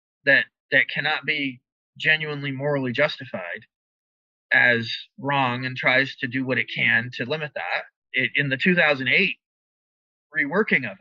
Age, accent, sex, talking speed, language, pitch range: 30-49, American, male, 135 wpm, English, 115-175 Hz